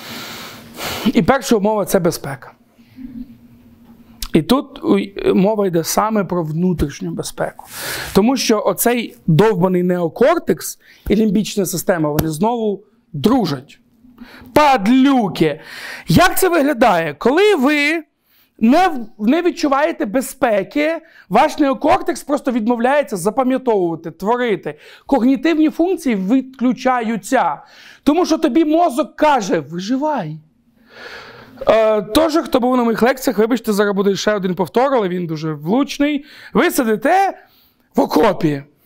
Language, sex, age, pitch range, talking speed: Russian, male, 40-59, 205-290 Hz, 110 wpm